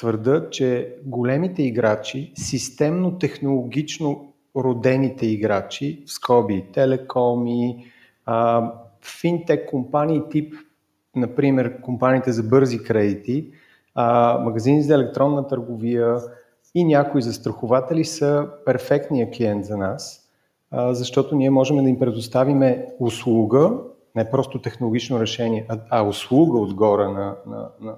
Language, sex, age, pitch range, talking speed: Bulgarian, male, 40-59, 115-140 Hz, 105 wpm